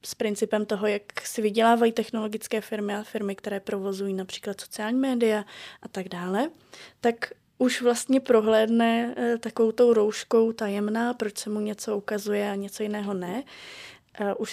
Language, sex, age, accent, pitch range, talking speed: Czech, female, 20-39, native, 200-225 Hz, 150 wpm